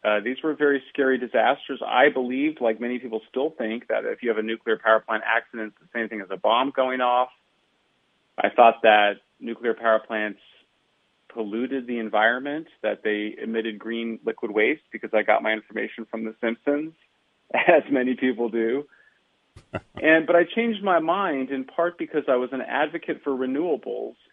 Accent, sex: American, male